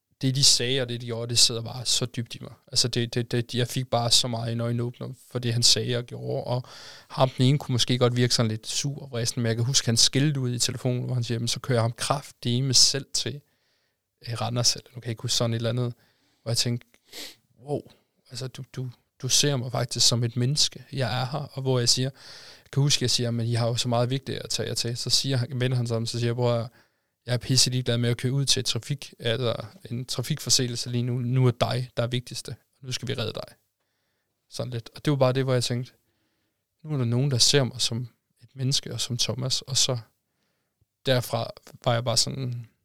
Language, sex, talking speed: Danish, male, 250 wpm